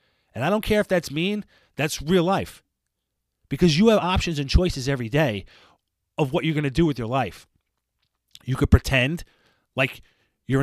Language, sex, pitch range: English, male, 110-155 Hz